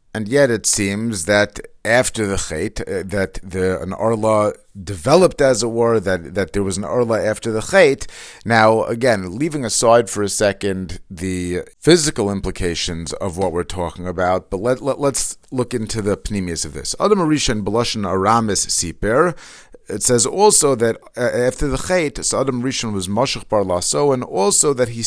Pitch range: 100-130 Hz